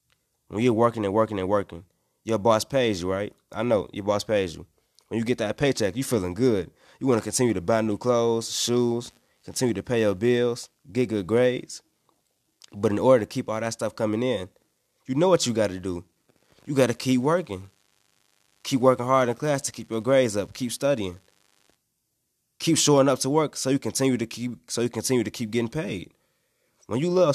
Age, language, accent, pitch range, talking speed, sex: 20-39, English, American, 105-130 Hz, 205 wpm, male